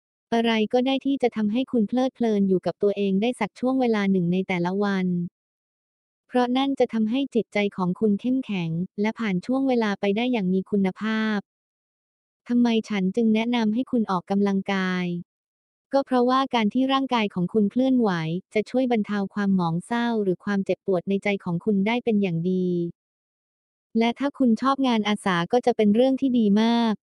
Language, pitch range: English, 195-240 Hz